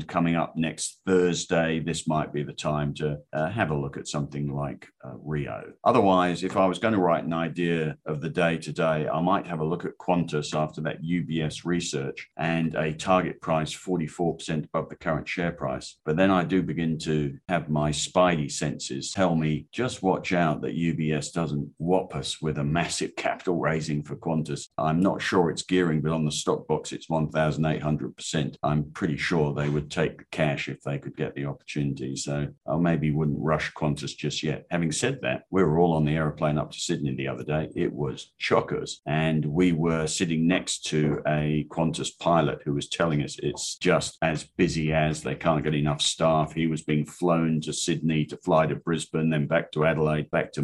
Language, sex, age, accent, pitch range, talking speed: English, male, 50-69, British, 75-85 Hz, 205 wpm